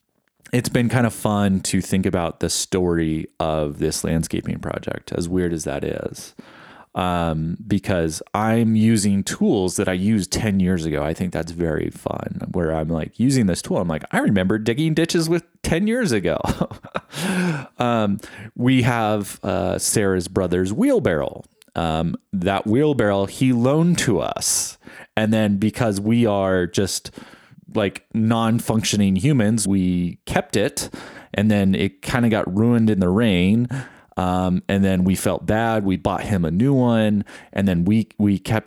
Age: 30-49